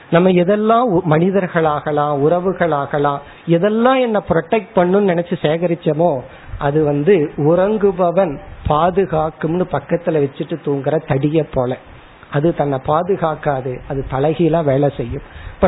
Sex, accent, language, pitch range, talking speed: male, native, Tamil, 145-180 Hz, 75 wpm